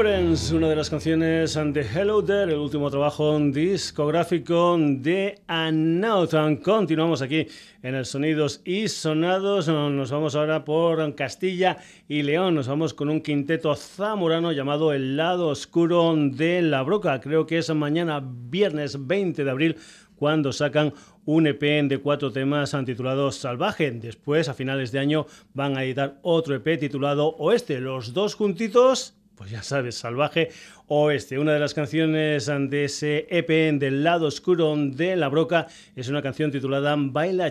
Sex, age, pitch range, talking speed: male, 40-59, 145-170 Hz, 150 wpm